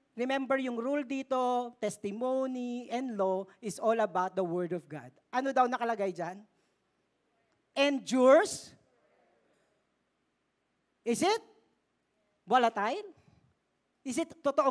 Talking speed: 105 wpm